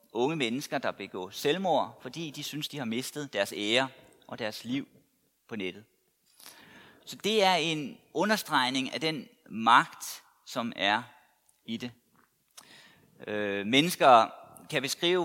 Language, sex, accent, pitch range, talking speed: Danish, male, native, 120-165 Hz, 135 wpm